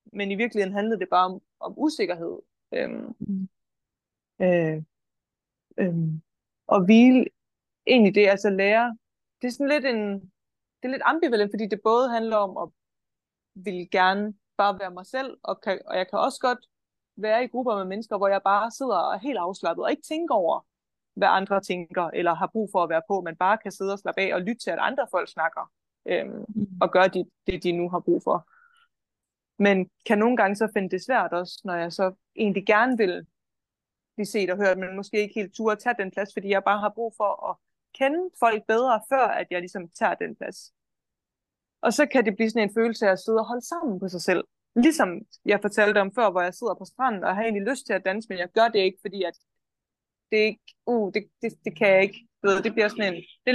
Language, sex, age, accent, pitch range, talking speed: Danish, female, 20-39, native, 190-230 Hz, 215 wpm